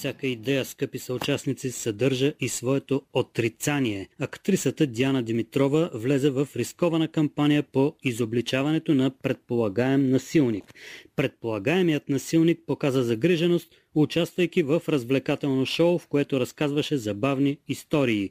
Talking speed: 110 wpm